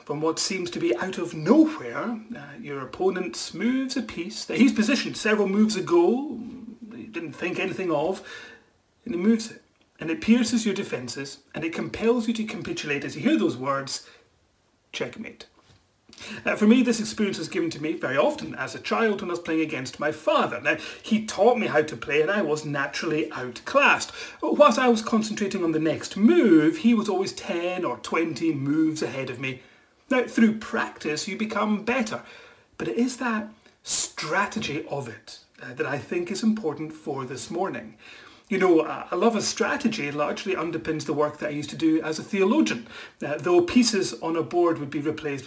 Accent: British